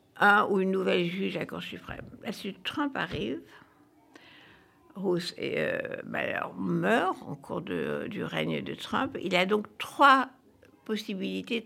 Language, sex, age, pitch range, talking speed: French, female, 60-79, 185-250 Hz, 145 wpm